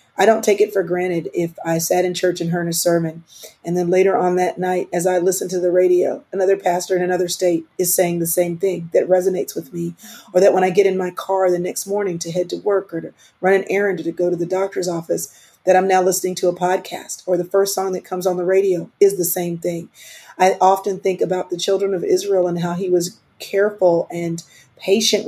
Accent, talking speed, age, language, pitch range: American, 240 wpm, 40-59, English, 175-195 Hz